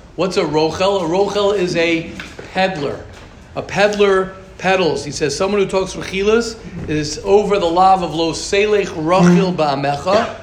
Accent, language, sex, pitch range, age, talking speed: American, English, male, 165-200 Hz, 50-69, 150 wpm